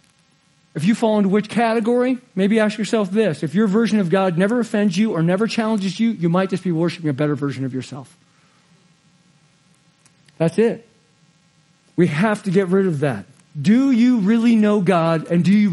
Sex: male